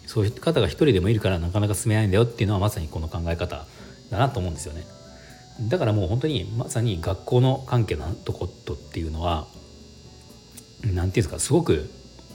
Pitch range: 80-115 Hz